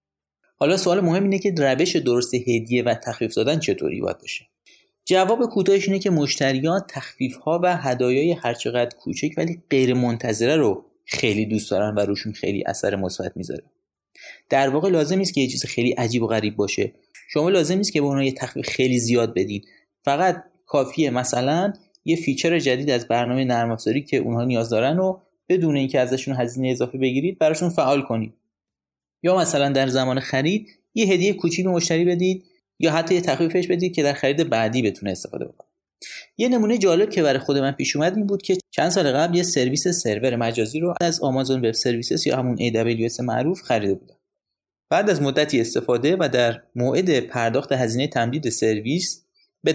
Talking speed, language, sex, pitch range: 175 wpm, Persian, male, 120-175 Hz